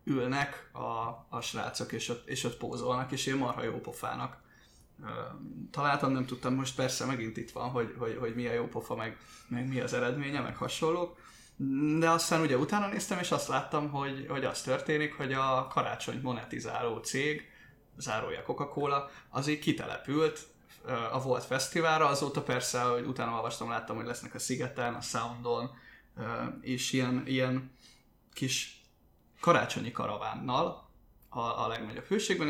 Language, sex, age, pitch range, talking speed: Hungarian, male, 20-39, 120-150 Hz, 140 wpm